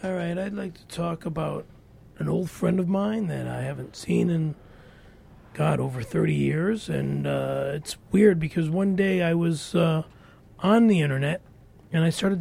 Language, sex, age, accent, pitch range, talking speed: English, male, 30-49, American, 160-200 Hz, 180 wpm